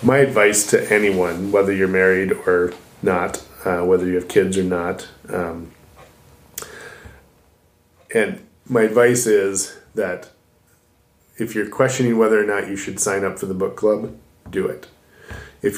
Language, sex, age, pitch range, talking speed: English, male, 20-39, 95-110 Hz, 150 wpm